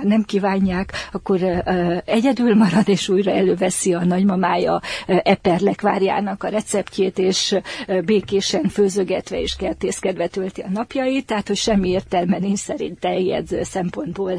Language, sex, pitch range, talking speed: Hungarian, female, 180-205 Hz, 130 wpm